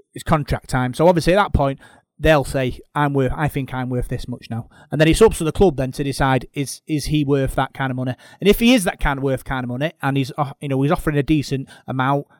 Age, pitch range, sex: 30-49, 130-165 Hz, male